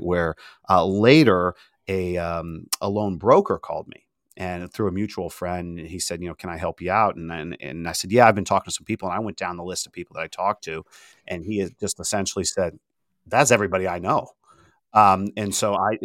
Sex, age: male, 40-59